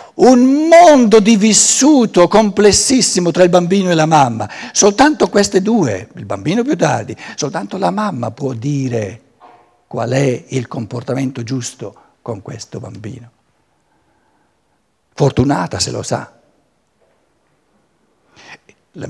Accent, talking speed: native, 115 wpm